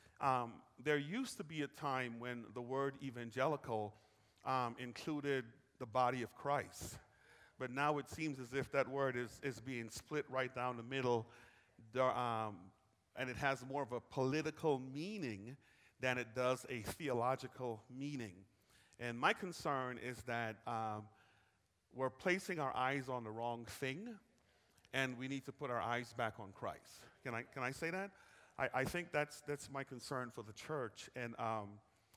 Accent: American